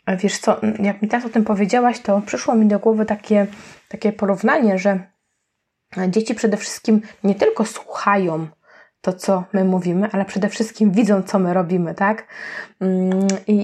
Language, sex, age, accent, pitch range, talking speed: Polish, female, 20-39, native, 195-225 Hz, 160 wpm